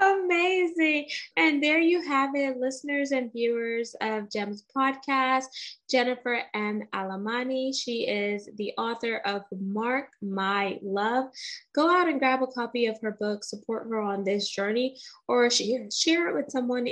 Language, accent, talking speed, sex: English, American, 150 wpm, female